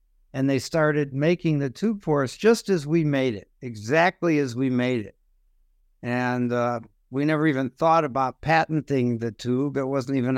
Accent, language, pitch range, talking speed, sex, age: American, English, 125-150 Hz, 180 wpm, male, 60-79